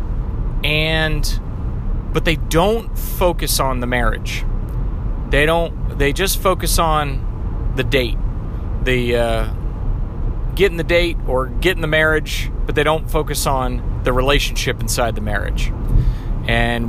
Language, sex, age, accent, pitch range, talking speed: English, male, 30-49, American, 110-140 Hz, 130 wpm